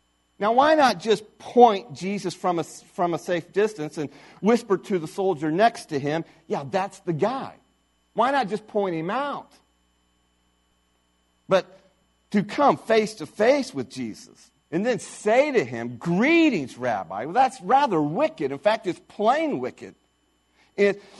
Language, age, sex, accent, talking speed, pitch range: English, 50-69, male, American, 155 wpm, 150-245 Hz